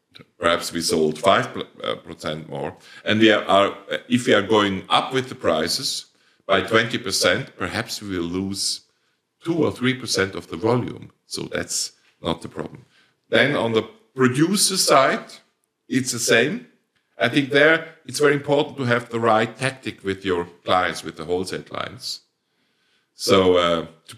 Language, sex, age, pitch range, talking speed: English, male, 50-69, 95-145 Hz, 155 wpm